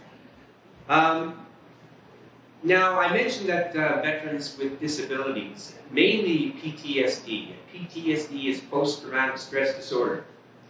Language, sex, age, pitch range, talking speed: English, male, 40-59, 120-160 Hz, 90 wpm